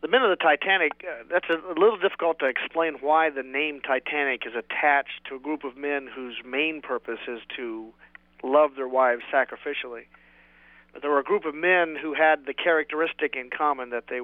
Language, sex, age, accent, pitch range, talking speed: English, male, 40-59, American, 130-150 Hz, 200 wpm